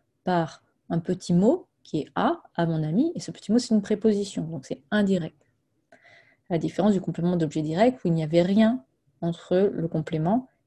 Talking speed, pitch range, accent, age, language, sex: 190 wpm, 155-210 Hz, French, 30-49, French, female